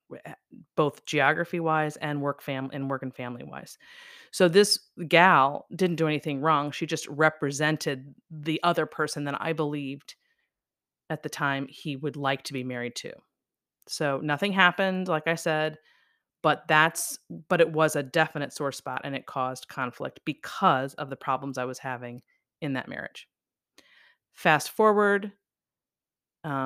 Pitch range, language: 140-165 Hz, English